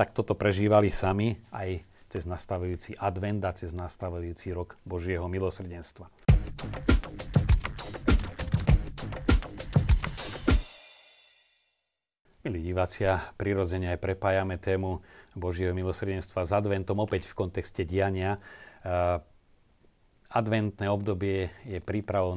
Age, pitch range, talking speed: 40-59, 90-100 Hz, 90 wpm